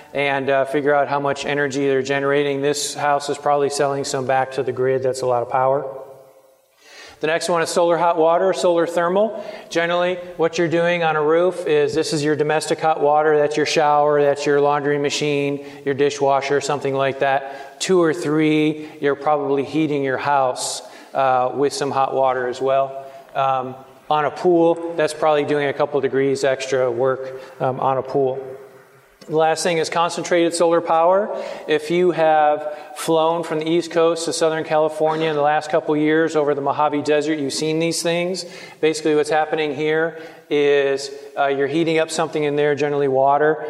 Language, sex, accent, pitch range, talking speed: English, male, American, 135-155 Hz, 185 wpm